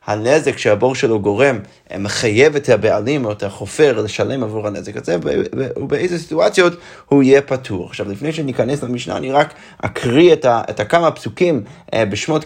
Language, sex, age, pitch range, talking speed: Hebrew, male, 30-49, 115-165 Hz, 150 wpm